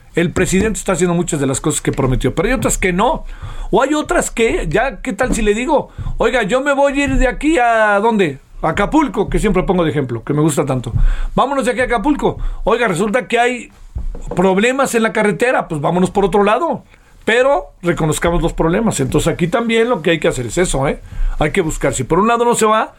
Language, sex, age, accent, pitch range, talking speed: Spanish, male, 40-59, Mexican, 150-215 Hz, 230 wpm